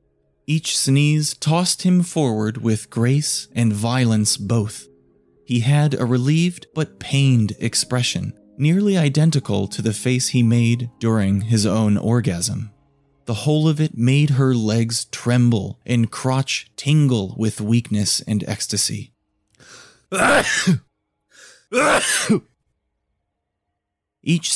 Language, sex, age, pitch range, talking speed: English, male, 30-49, 110-140 Hz, 110 wpm